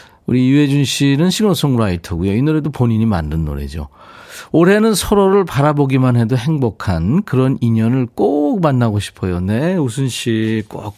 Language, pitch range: Korean, 100-150 Hz